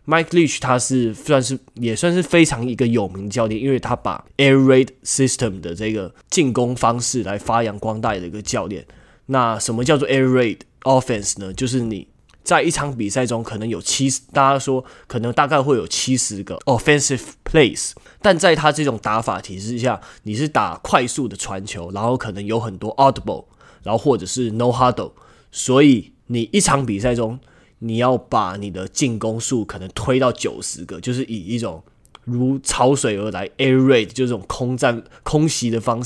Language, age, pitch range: Chinese, 20-39, 105-130 Hz